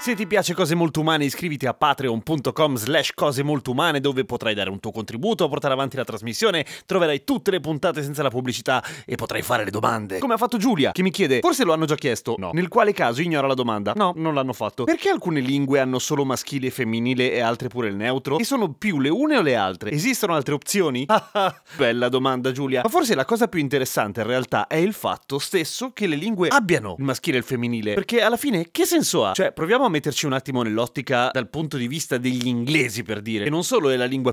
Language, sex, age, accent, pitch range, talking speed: Italian, male, 30-49, native, 125-165 Hz, 235 wpm